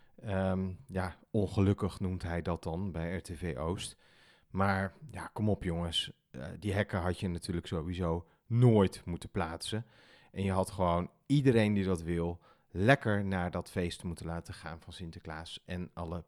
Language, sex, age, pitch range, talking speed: Dutch, male, 40-59, 90-115 Hz, 160 wpm